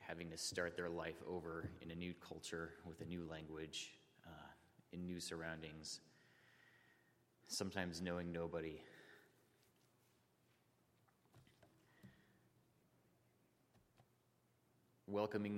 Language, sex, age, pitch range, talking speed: English, male, 30-49, 80-90 Hz, 85 wpm